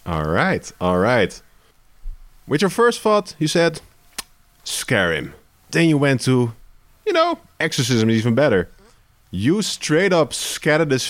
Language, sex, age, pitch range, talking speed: English, male, 30-49, 90-125 Hz, 145 wpm